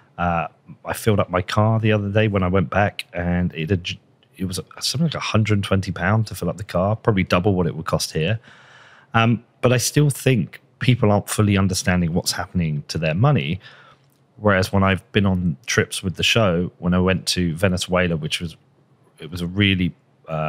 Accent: British